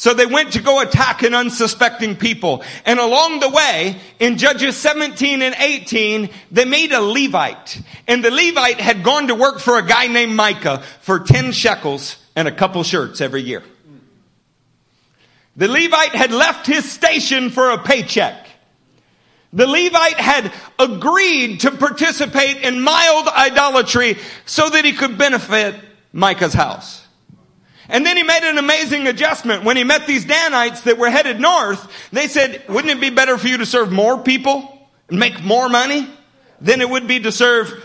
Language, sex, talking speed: English, male, 170 wpm